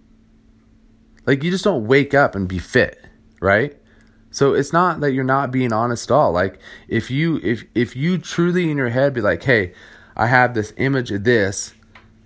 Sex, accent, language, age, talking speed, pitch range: male, American, English, 30-49, 190 wpm, 100-115 Hz